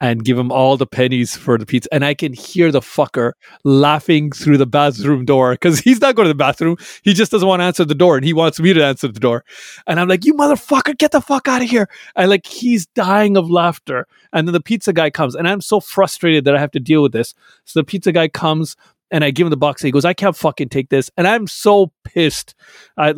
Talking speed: 260 wpm